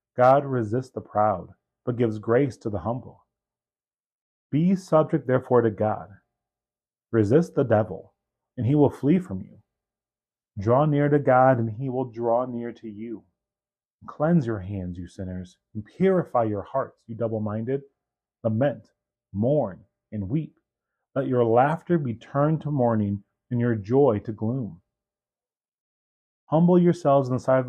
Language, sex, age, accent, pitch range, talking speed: English, male, 30-49, American, 105-140 Hz, 145 wpm